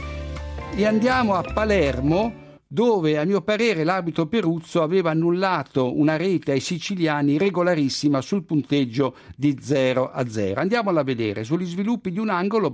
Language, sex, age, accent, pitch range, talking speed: Italian, male, 60-79, native, 135-185 Hz, 145 wpm